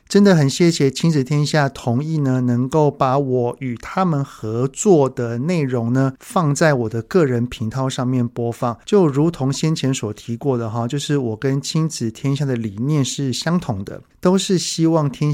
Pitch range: 120-150 Hz